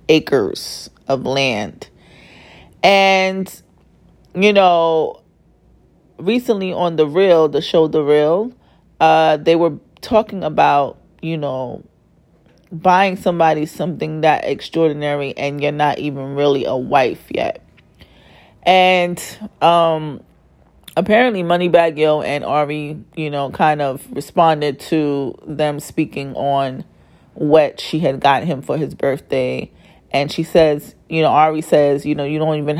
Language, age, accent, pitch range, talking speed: English, 30-49, American, 145-180 Hz, 130 wpm